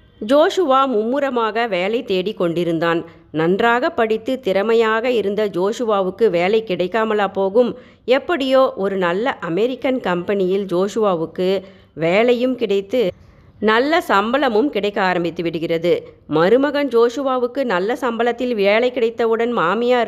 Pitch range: 185-245 Hz